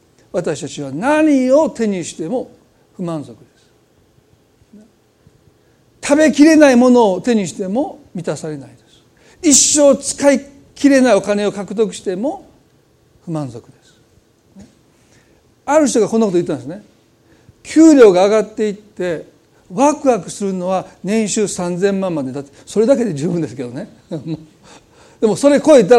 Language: Japanese